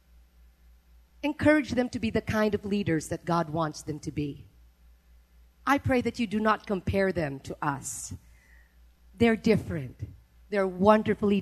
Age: 40-59